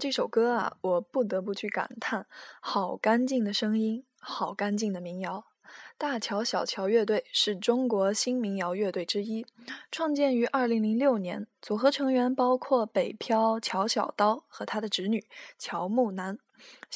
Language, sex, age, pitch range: Chinese, female, 10-29, 205-255 Hz